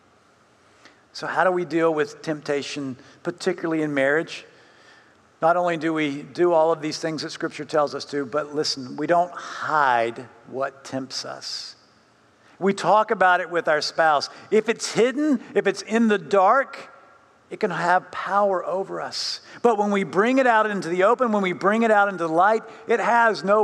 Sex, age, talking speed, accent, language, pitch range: male, 50-69, 185 wpm, American, English, 160-215 Hz